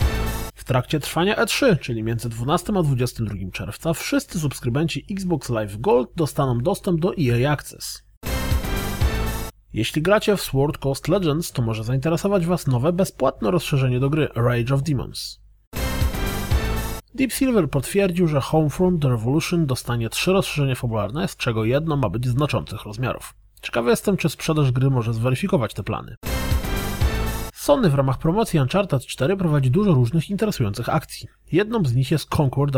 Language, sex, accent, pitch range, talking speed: Polish, male, native, 115-170 Hz, 145 wpm